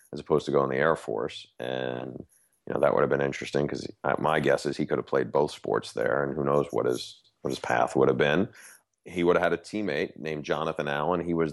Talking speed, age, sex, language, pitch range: 255 wpm, 30-49, male, English, 70-80 Hz